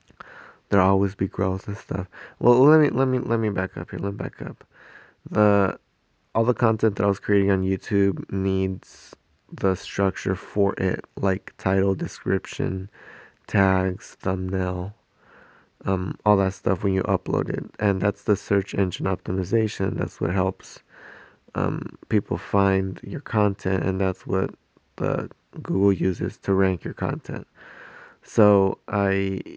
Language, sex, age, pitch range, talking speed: English, male, 20-39, 95-105 Hz, 150 wpm